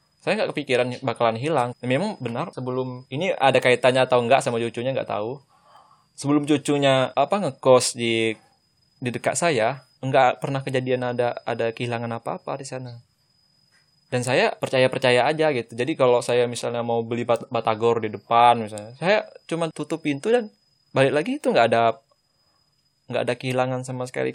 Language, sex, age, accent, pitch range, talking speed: Indonesian, male, 20-39, native, 115-135 Hz, 160 wpm